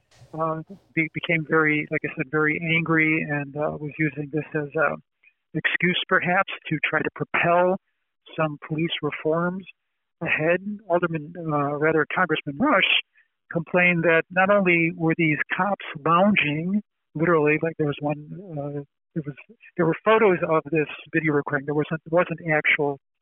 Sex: male